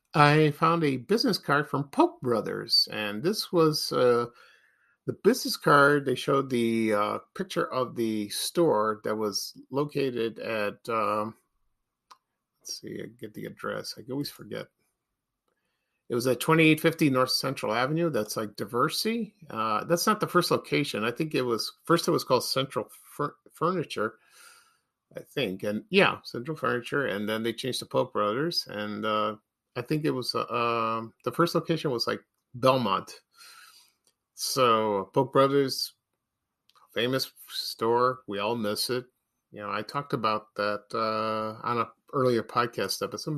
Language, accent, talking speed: English, American, 155 wpm